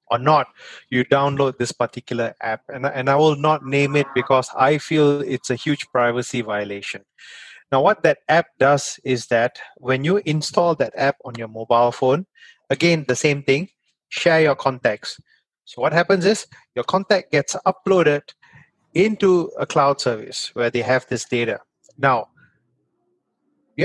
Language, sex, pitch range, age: English, male, 125-165 Hz, 30-49